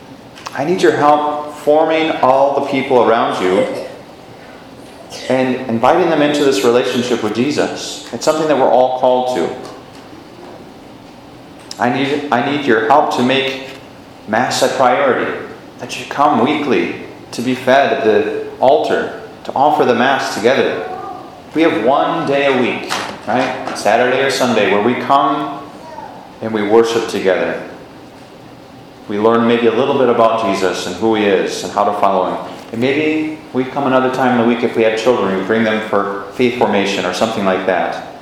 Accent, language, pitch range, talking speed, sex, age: American, English, 115-150 Hz, 170 wpm, male, 30-49